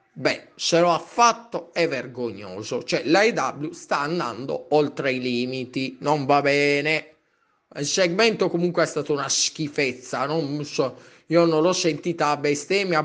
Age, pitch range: 20-39, 135-165 Hz